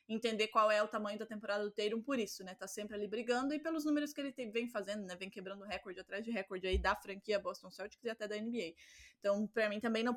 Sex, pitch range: female, 205-245 Hz